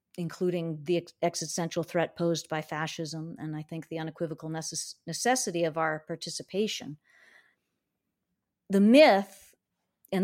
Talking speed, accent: 110 wpm, American